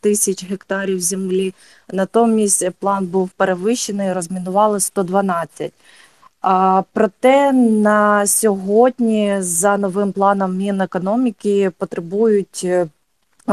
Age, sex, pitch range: 20-39, female, 180-200 Hz